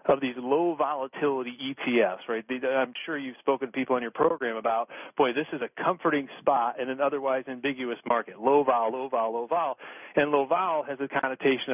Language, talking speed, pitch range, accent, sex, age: English, 200 wpm, 125-150 Hz, American, male, 40-59